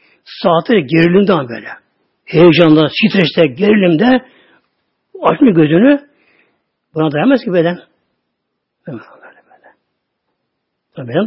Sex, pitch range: male, 170-240 Hz